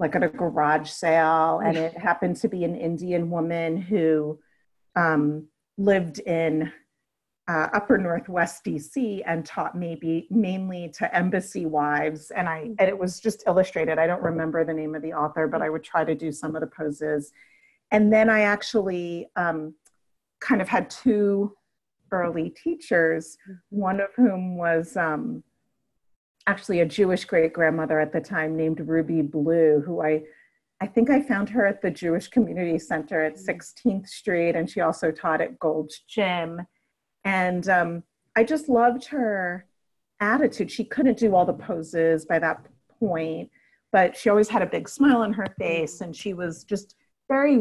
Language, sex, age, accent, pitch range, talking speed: English, female, 40-59, American, 160-210 Hz, 165 wpm